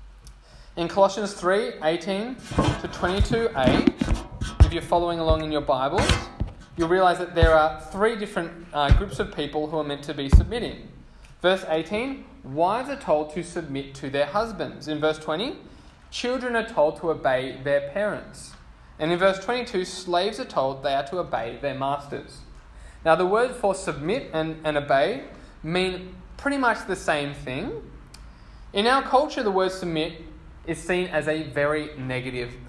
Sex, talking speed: male, 165 wpm